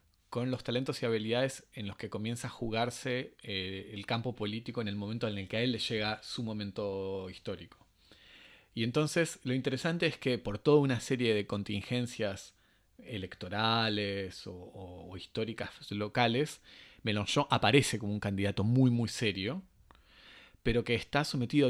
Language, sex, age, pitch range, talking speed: Spanish, male, 30-49, 100-125 Hz, 160 wpm